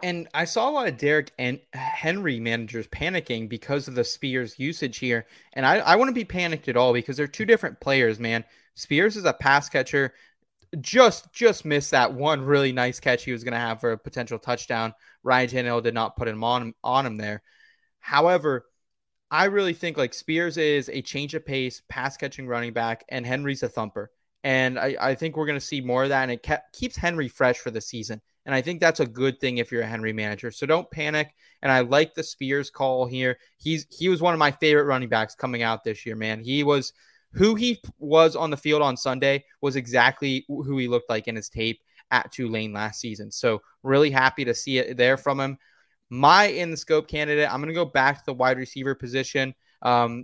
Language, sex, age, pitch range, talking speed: English, male, 20-39, 120-150 Hz, 220 wpm